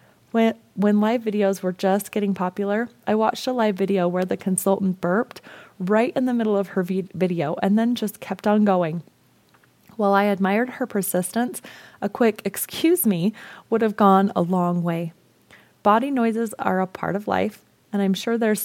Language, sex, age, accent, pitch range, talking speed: English, female, 30-49, American, 185-220 Hz, 180 wpm